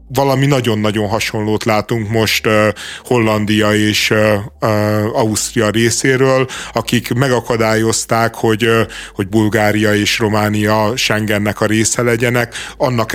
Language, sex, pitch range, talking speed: Hungarian, male, 110-125 Hz, 95 wpm